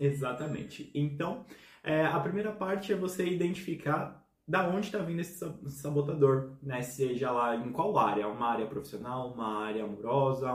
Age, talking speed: 20-39, 150 wpm